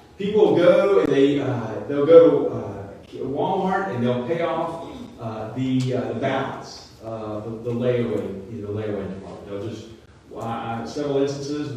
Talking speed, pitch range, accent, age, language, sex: 160 wpm, 120-150 Hz, American, 40-59, English, male